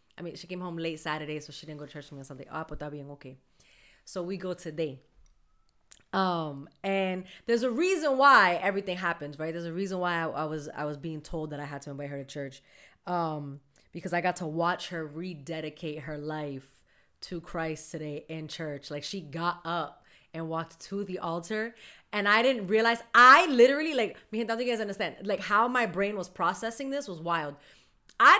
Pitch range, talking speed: 160-240 Hz, 210 wpm